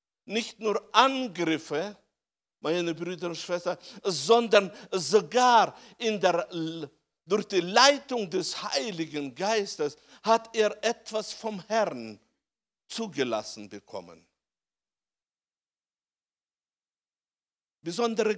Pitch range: 170-235 Hz